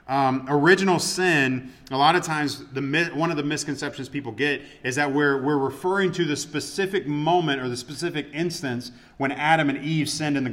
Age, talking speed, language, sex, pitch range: 30-49, 195 wpm, English, male, 125-155 Hz